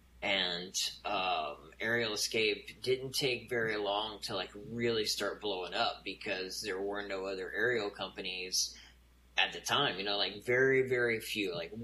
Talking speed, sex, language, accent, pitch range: 155 wpm, male, English, American, 95-120 Hz